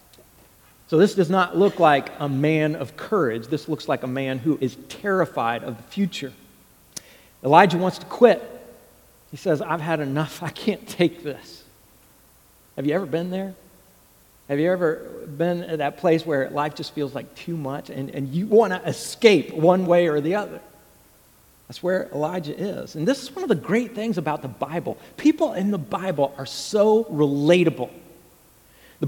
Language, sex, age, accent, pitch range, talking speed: English, male, 40-59, American, 145-190 Hz, 180 wpm